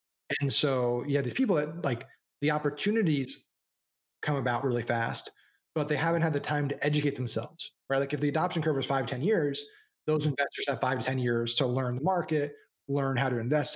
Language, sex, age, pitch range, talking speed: English, male, 20-39, 120-145 Hz, 210 wpm